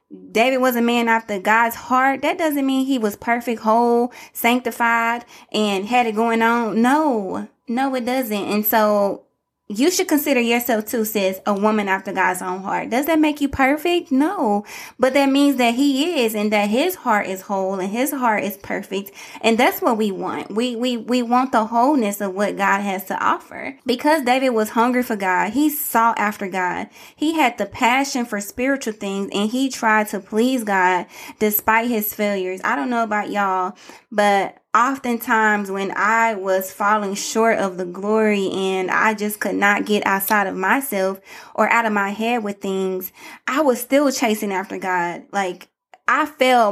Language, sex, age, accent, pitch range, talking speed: English, female, 20-39, American, 205-255 Hz, 185 wpm